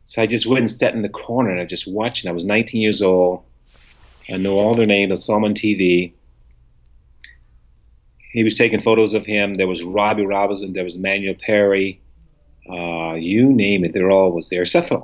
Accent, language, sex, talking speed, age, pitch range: American, English, male, 210 wpm, 40-59, 85-110 Hz